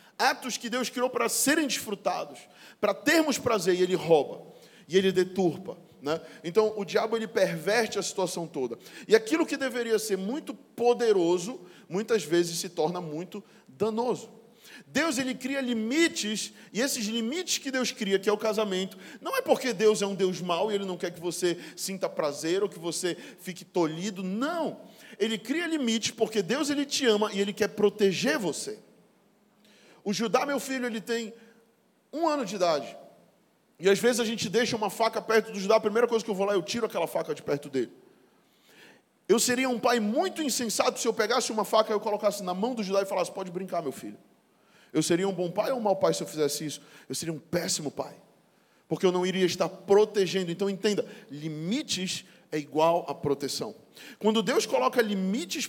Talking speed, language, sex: 195 wpm, Portuguese, male